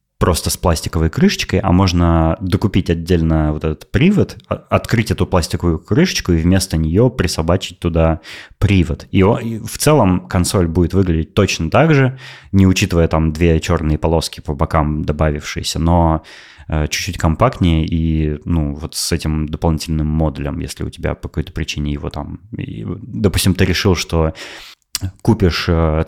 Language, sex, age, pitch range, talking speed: Russian, male, 20-39, 80-100 Hz, 145 wpm